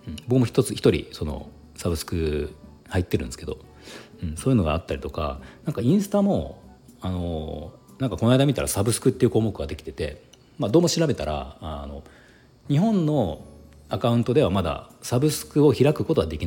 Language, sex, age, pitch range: Japanese, male, 40-59, 75-120 Hz